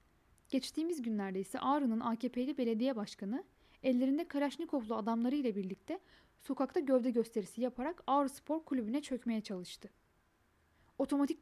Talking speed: 115 wpm